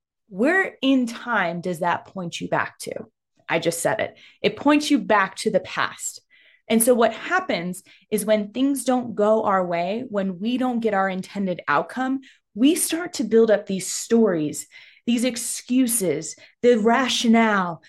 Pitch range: 190-255 Hz